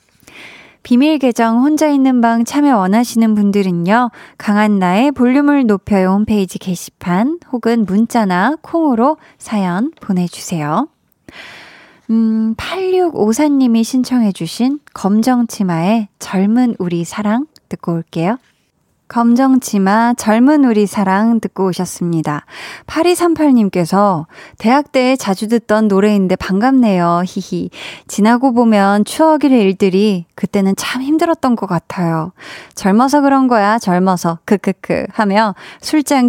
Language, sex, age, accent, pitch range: Korean, female, 20-39, native, 190-250 Hz